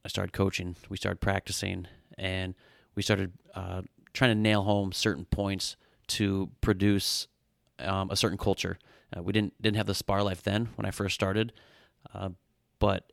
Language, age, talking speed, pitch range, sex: English, 30-49, 170 wpm, 95-110 Hz, male